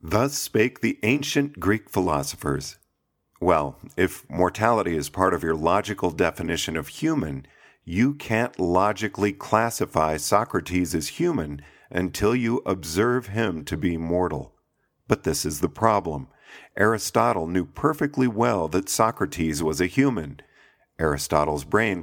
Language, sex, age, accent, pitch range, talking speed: English, male, 50-69, American, 85-115 Hz, 130 wpm